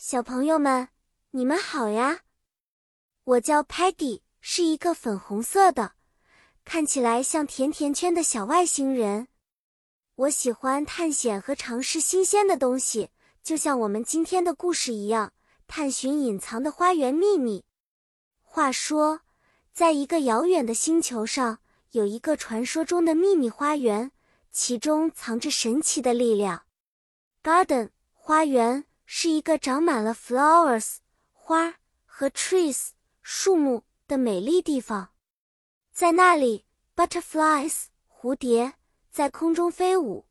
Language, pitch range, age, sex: Chinese, 240-335 Hz, 20-39, male